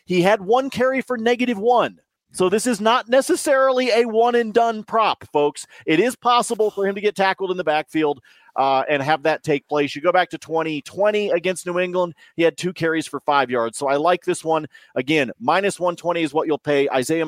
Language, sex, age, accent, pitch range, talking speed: English, male, 40-59, American, 135-175 Hz, 210 wpm